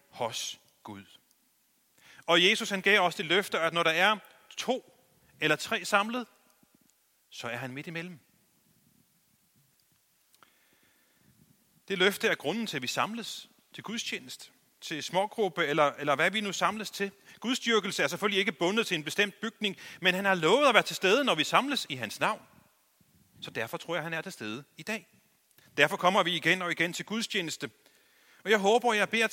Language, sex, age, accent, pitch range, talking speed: Danish, male, 30-49, native, 145-200 Hz, 180 wpm